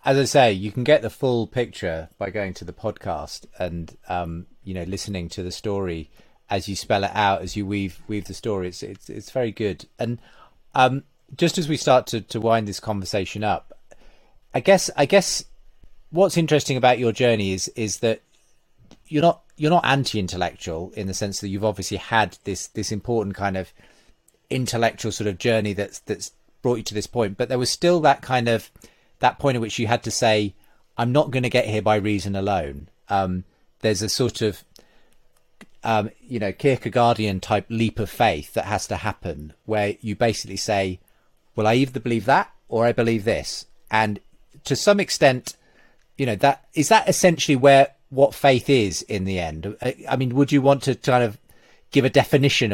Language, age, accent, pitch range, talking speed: English, 30-49, British, 100-130 Hz, 195 wpm